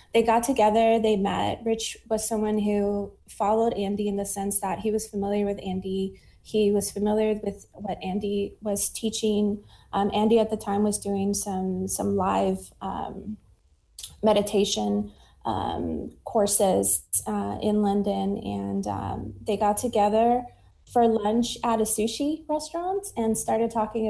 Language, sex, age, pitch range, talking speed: English, female, 20-39, 190-225 Hz, 145 wpm